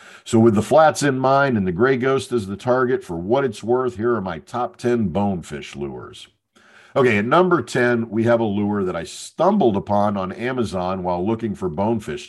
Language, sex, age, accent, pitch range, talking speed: English, male, 50-69, American, 95-120 Hz, 205 wpm